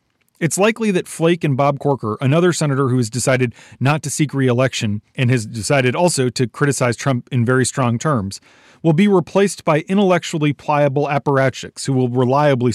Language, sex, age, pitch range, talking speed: English, male, 30-49, 125-160 Hz, 175 wpm